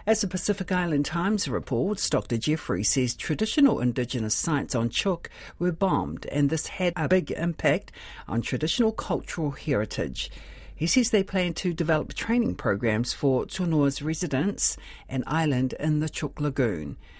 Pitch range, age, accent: 135-175 Hz, 60-79, Australian